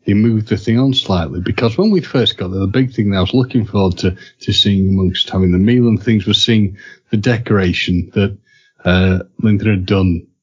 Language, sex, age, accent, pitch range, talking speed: English, male, 40-59, British, 95-120 Hz, 220 wpm